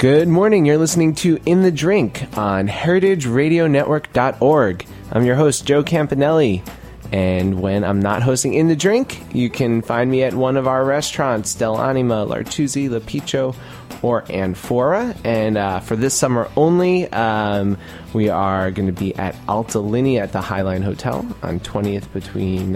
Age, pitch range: 20-39, 105-140 Hz